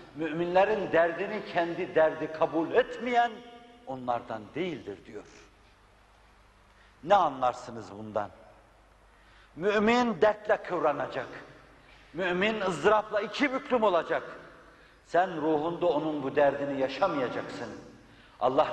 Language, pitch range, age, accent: Turkish, 125-205 Hz, 60-79, native